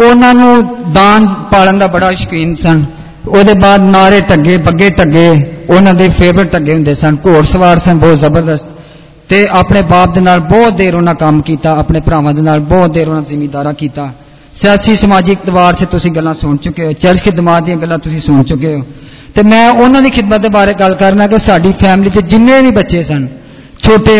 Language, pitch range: Hindi, 165-200 Hz